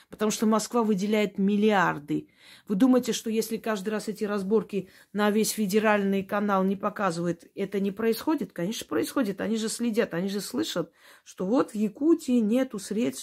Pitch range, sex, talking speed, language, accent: 165-220 Hz, female, 165 wpm, Russian, native